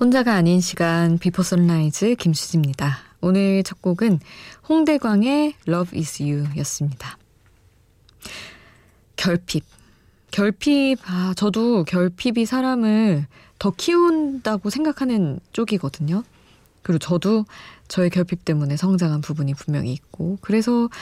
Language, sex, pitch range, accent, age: Korean, female, 155-220 Hz, native, 20-39